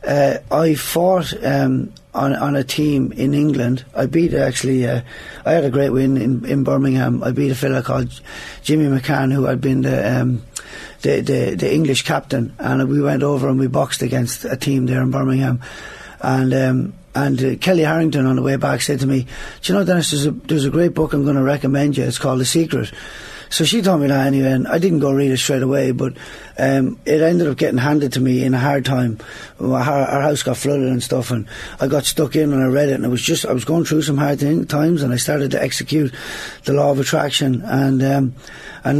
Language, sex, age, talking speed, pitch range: English, male, 30-49, 230 wpm, 130-150 Hz